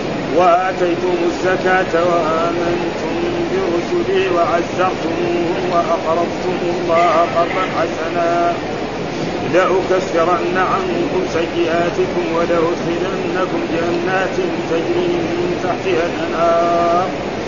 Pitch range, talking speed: 170-180 Hz, 60 wpm